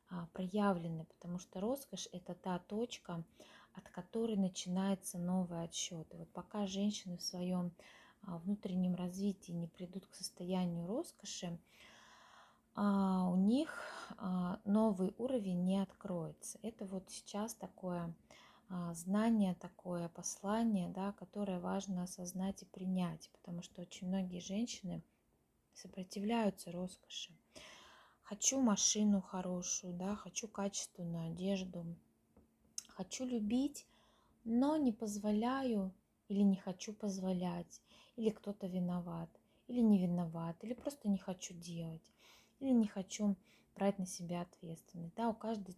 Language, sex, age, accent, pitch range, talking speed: Russian, female, 20-39, native, 180-210 Hz, 115 wpm